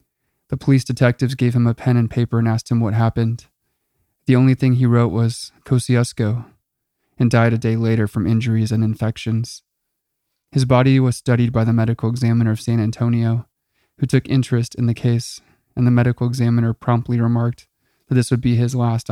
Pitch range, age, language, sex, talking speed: 115-125 Hz, 20-39, English, male, 185 wpm